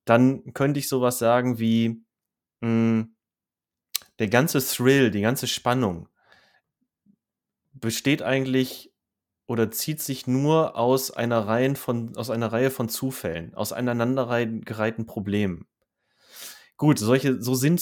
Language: German